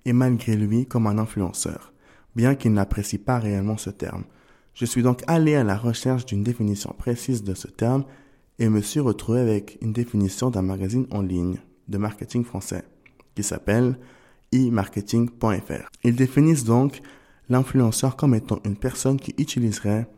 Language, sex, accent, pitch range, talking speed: French, male, French, 100-125 Hz, 160 wpm